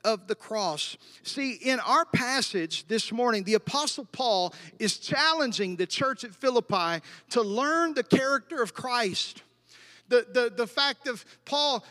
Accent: American